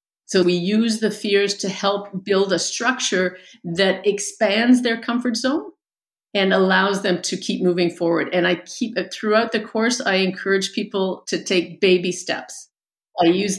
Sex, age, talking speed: female, 50-69, 165 wpm